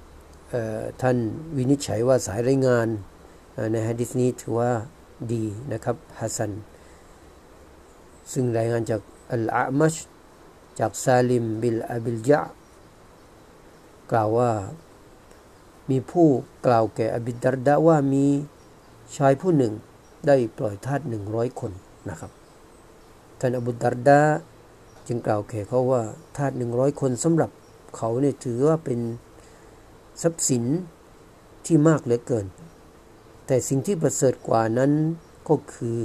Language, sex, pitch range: Thai, male, 110-135 Hz